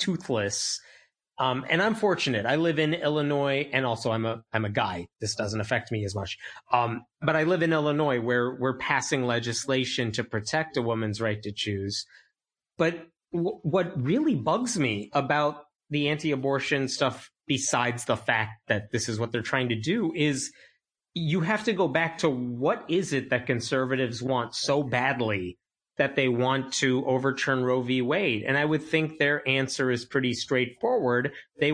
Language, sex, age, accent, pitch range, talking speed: English, male, 30-49, American, 120-155 Hz, 175 wpm